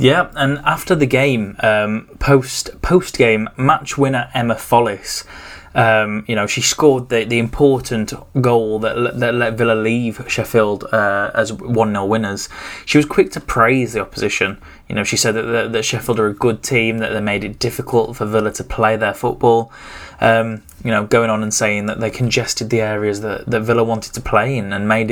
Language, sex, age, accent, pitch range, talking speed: English, male, 10-29, British, 105-125 Hz, 200 wpm